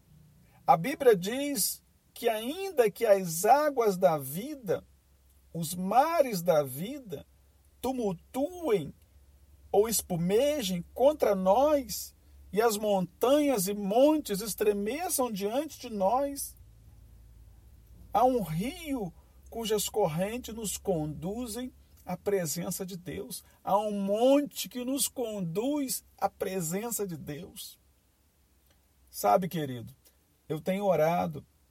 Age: 50-69